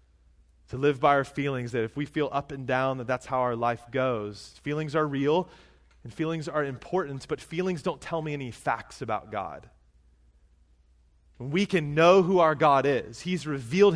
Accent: American